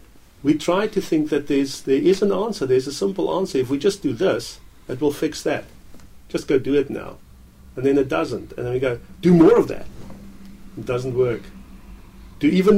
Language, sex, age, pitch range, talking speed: English, male, 50-69, 115-145 Hz, 210 wpm